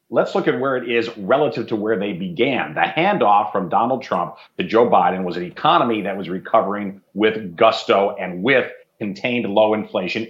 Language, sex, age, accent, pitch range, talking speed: English, male, 40-59, American, 110-145 Hz, 185 wpm